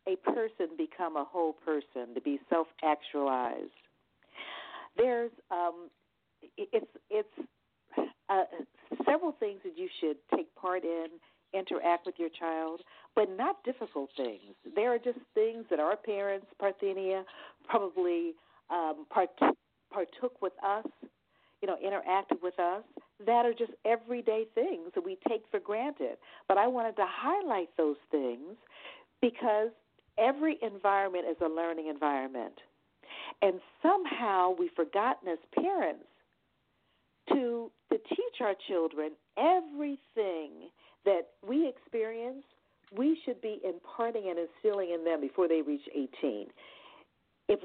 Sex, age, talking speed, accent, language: female, 50-69, 130 wpm, American, English